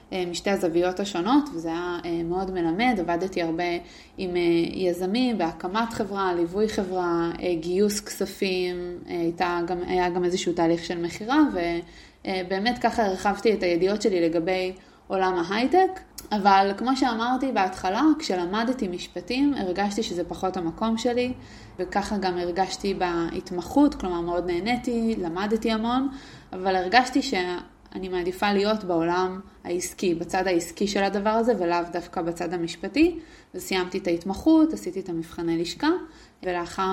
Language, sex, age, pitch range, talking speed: Hebrew, female, 20-39, 175-215 Hz, 125 wpm